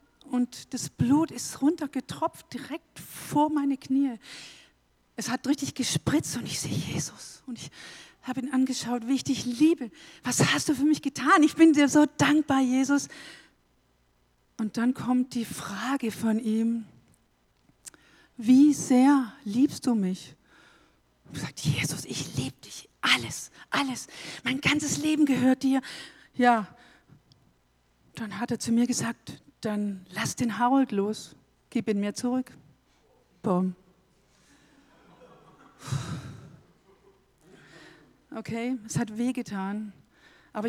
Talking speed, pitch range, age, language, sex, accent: 125 wpm, 205-265 Hz, 50-69, German, female, German